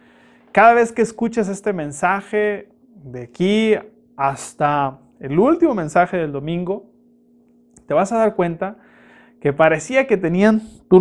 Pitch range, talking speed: 155-220 Hz, 130 wpm